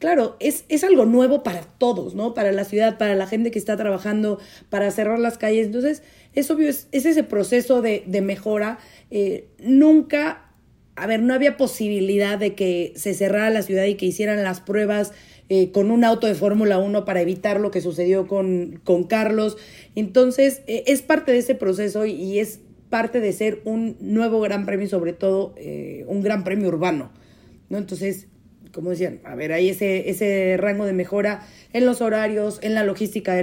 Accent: Mexican